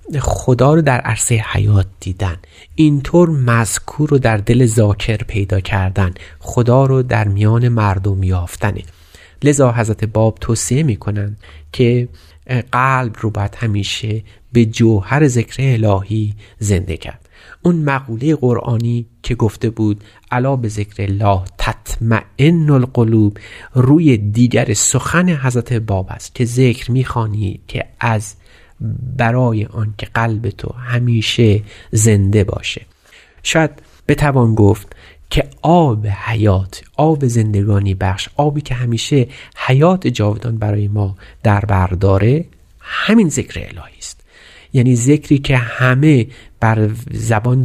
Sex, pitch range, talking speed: male, 100-125 Hz, 120 wpm